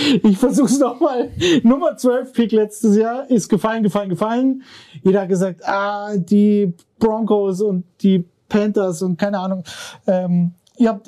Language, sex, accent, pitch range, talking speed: German, male, German, 185-220 Hz, 150 wpm